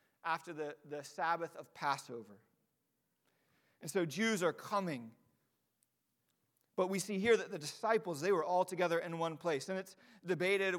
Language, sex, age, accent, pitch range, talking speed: English, male, 40-59, American, 155-190 Hz, 155 wpm